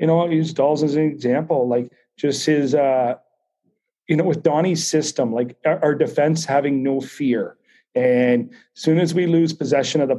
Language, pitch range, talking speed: English, 130-155 Hz, 190 wpm